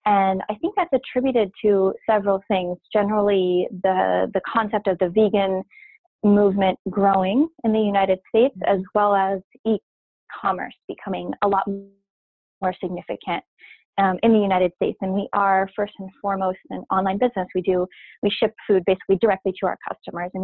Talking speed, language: 160 wpm, English